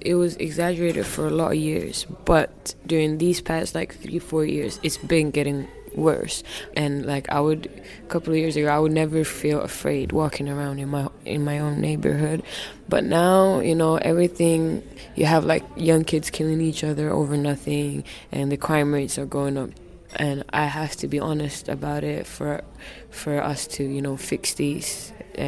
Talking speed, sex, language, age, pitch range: 190 wpm, female, English, 20-39, 140-160 Hz